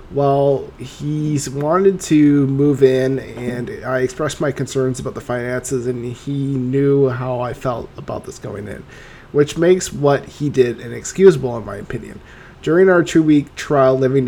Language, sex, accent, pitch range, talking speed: English, male, American, 125-150 Hz, 165 wpm